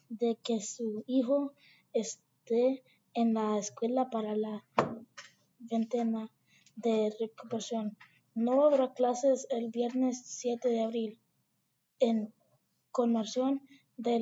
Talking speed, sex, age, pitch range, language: 100 wpm, female, 20-39, 225-255 Hz, English